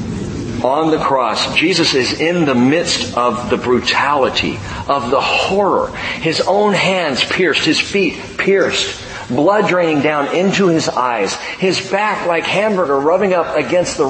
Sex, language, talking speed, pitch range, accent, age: male, English, 150 wpm, 135-195 Hz, American, 40-59